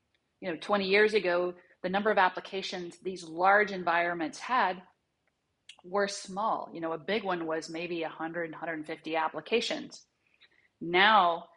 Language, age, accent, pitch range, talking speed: English, 30-49, American, 170-210 Hz, 135 wpm